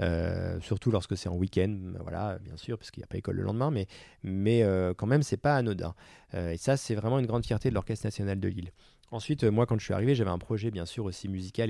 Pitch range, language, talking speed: 95-115 Hz, French, 270 wpm